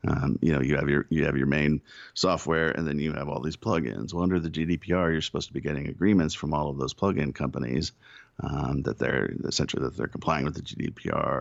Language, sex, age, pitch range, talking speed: English, male, 50-69, 75-85 Hz, 240 wpm